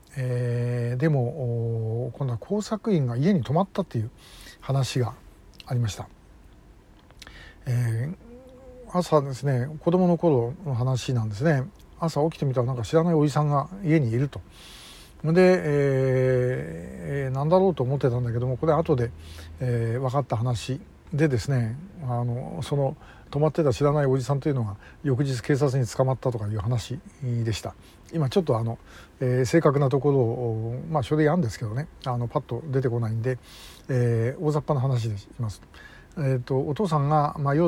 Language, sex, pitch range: Japanese, male, 120-150 Hz